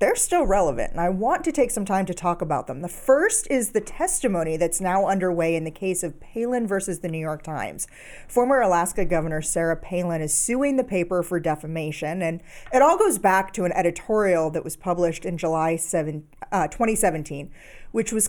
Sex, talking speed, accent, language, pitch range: female, 195 wpm, American, English, 170-235 Hz